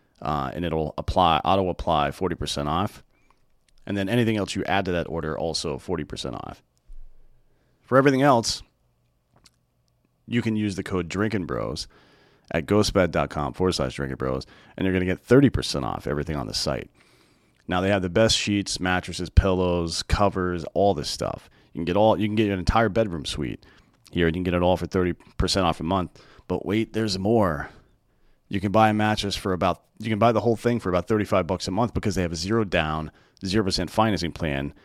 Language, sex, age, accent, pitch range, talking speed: English, male, 30-49, American, 85-105 Hz, 195 wpm